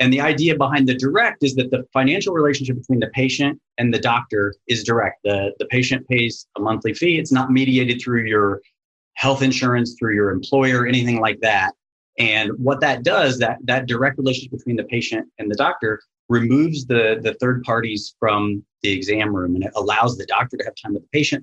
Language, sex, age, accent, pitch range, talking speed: English, male, 30-49, American, 105-130 Hz, 205 wpm